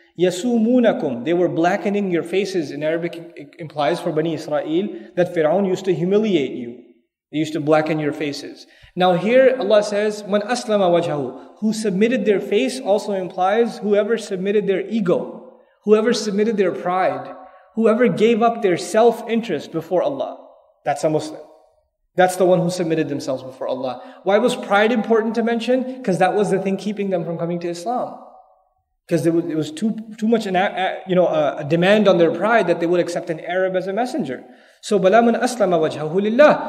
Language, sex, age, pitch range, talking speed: English, male, 30-49, 170-220 Hz, 175 wpm